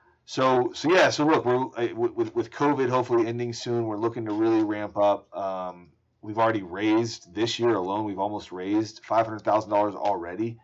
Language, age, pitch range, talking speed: English, 30-49, 95-120 Hz, 180 wpm